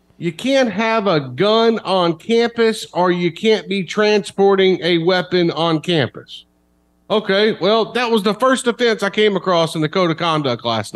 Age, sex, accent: 40-59, male, American